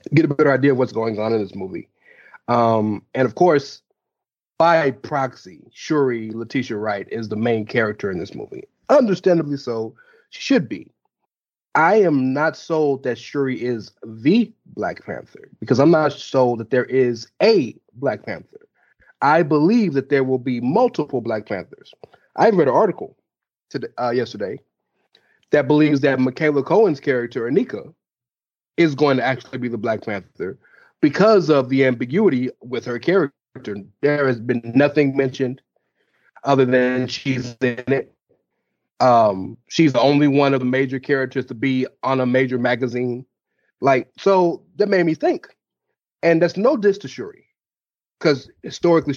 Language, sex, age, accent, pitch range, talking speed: English, male, 30-49, American, 120-150 Hz, 155 wpm